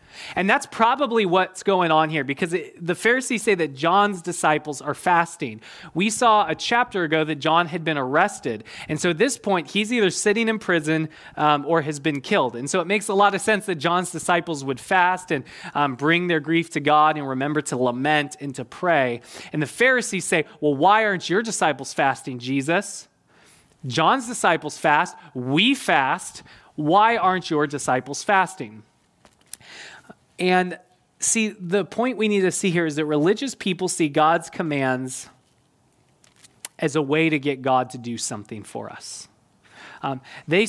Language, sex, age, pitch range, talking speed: English, male, 20-39, 155-215 Hz, 175 wpm